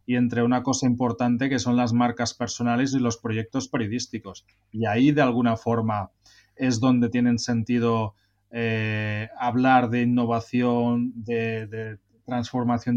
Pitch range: 115-130 Hz